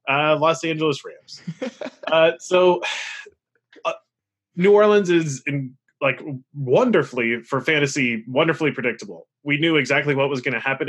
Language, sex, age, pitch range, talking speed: English, male, 20-39, 125-160 Hz, 140 wpm